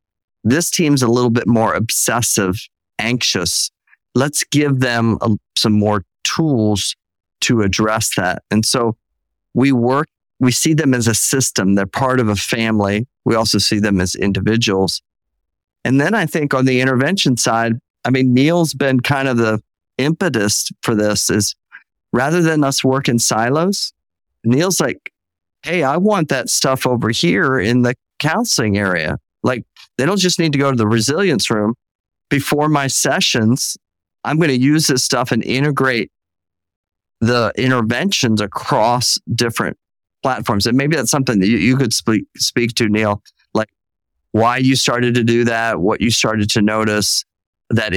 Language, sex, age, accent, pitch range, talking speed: English, male, 50-69, American, 105-135 Hz, 160 wpm